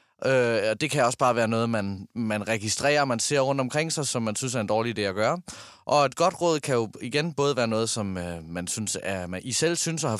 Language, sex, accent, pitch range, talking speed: Danish, male, native, 115-170 Hz, 265 wpm